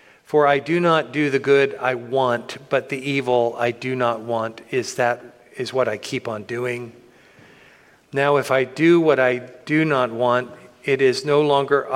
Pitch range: 135-170 Hz